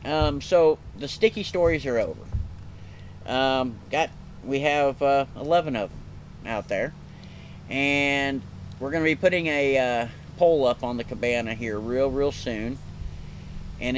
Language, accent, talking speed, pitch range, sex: English, American, 145 wpm, 105-140 Hz, male